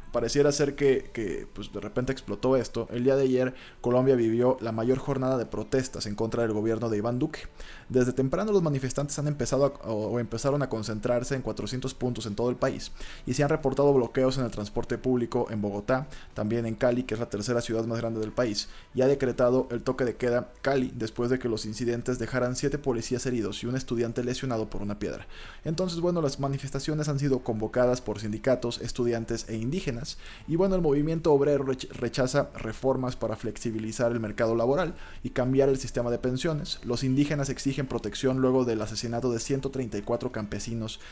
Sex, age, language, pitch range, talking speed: male, 20-39, Spanish, 115-135 Hz, 195 wpm